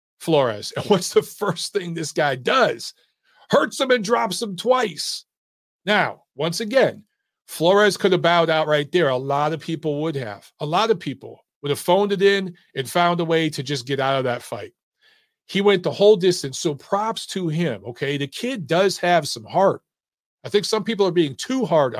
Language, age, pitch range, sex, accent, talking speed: English, 40-59, 145-185 Hz, male, American, 205 wpm